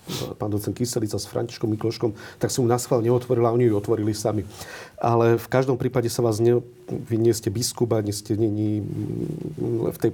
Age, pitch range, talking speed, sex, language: 40-59, 100-115 Hz, 190 wpm, male, Slovak